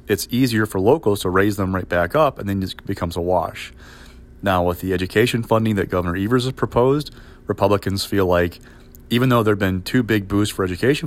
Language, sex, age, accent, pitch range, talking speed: English, male, 30-49, American, 90-115 Hz, 210 wpm